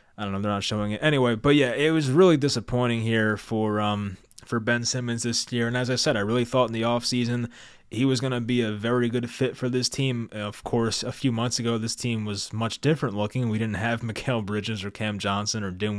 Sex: male